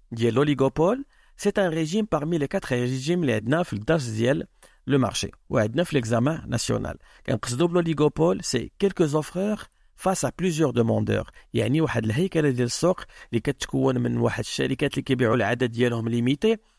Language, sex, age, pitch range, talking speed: Arabic, male, 50-69, 125-180 Hz, 205 wpm